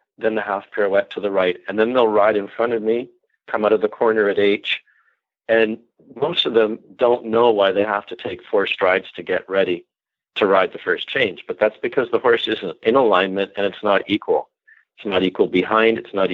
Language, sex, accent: English, male, American